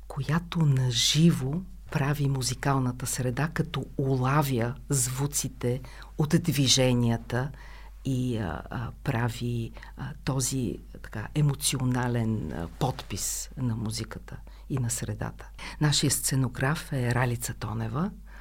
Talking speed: 100 wpm